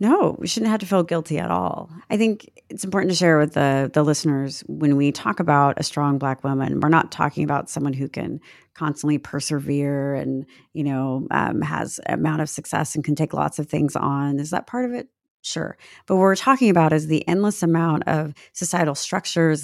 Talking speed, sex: 210 wpm, female